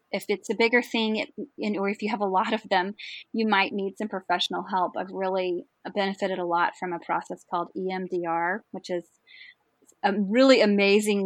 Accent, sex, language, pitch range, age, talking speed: American, female, English, 185-230 Hz, 30-49, 185 wpm